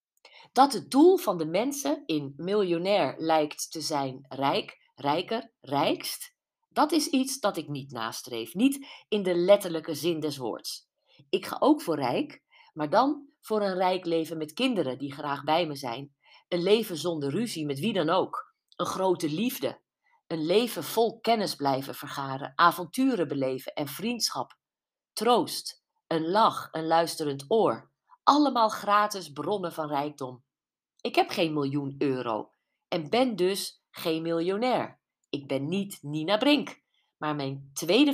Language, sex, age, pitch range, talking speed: Dutch, female, 50-69, 155-220 Hz, 150 wpm